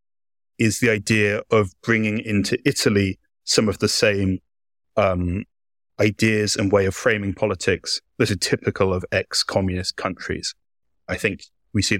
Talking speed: 145 wpm